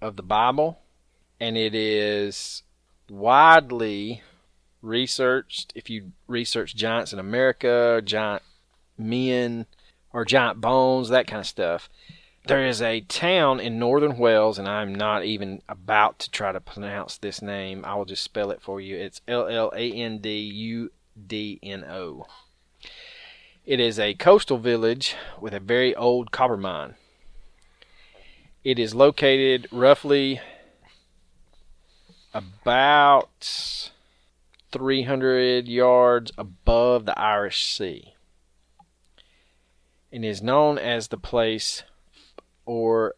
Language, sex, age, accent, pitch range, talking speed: English, male, 30-49, American, 90-120 Hz, 110 wpm